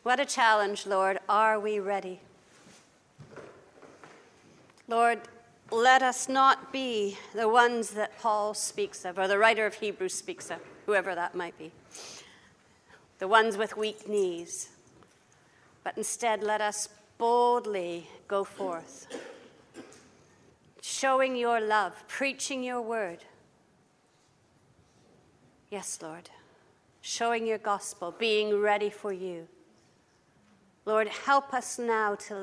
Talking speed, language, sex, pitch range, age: 115 wpm, English, female, 185-225 Hz, 50-69